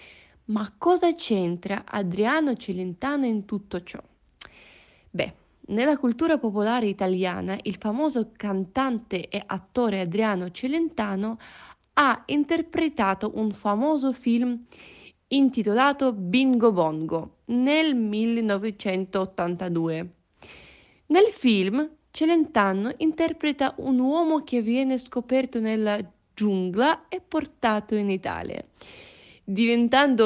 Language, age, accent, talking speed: Italian, 20-39, native, 90 wpm